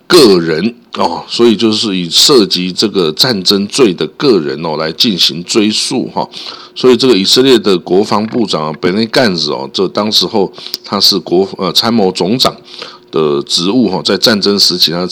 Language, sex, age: Chinese, male, 50-69